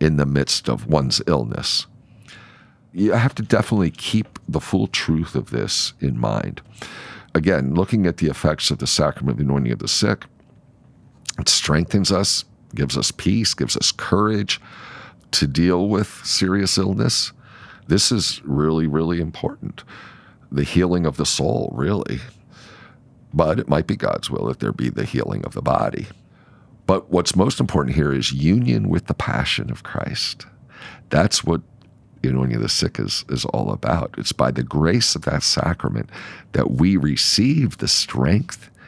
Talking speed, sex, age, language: 160 wpm, male, 50-69, English